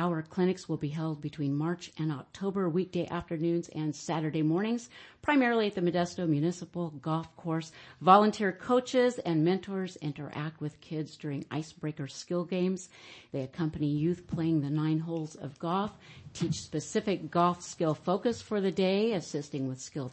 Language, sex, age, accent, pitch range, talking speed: English, female, 50-69, American, 155-185 Hz, 155 wpm